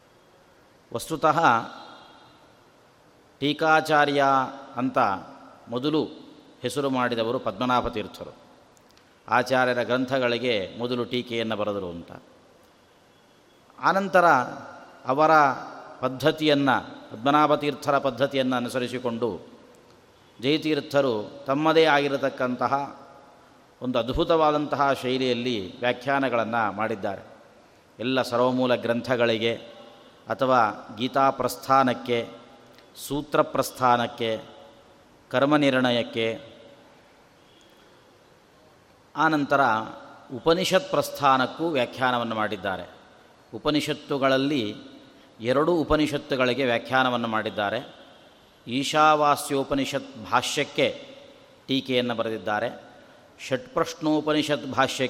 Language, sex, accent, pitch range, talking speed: Kannada, male, native, 120-145 Hz, 55 wpm